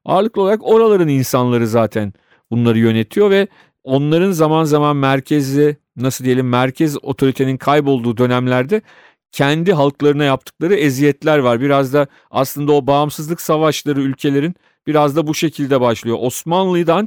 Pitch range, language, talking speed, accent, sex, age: 125-150 Hz, Turkish, 125 wpm, native, male, 40-59